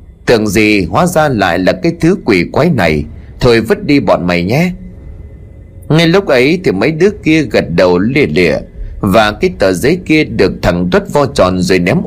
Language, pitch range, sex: Vietnamese, 90-155 Hz, male